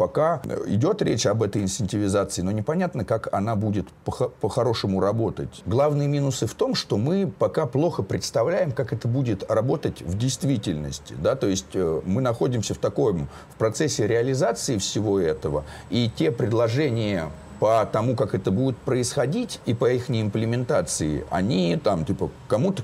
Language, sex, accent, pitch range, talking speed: Russian, male, native, 95-130 Hz, 140 wpm